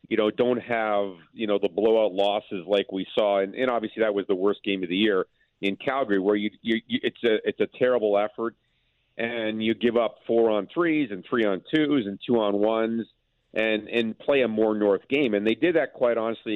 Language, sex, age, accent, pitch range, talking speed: English, male, 50-69, American, 100-120 Hz, 230 wpm